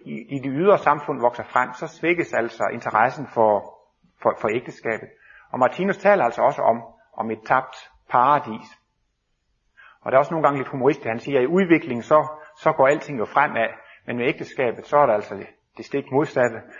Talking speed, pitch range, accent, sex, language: 200 wpm, 125-170 Hz, native, male, Danish